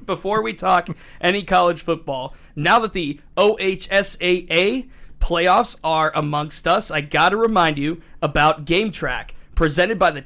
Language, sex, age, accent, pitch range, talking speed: English, male, 30-49, American, 150-185 Hz, 140 wpm